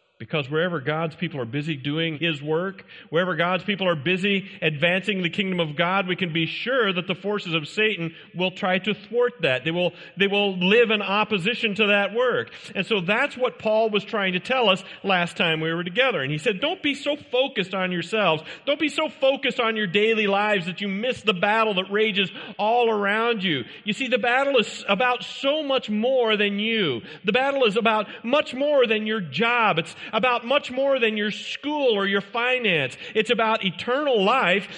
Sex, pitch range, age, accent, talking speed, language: male, 180-240 Hz, 40-59, American, 205 wpm, English